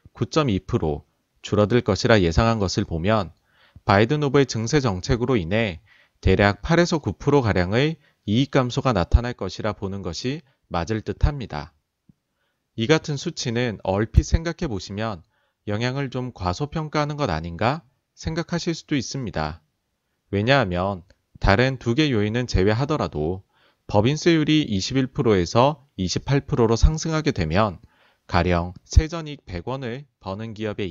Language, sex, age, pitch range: Korean, male, 30-49, 95-140 Hz